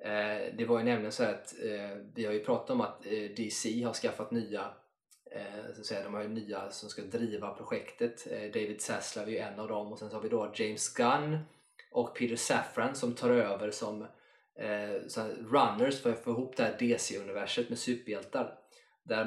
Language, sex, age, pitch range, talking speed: Swedish, male, 20-39, 105-120 Hz, 185 wpm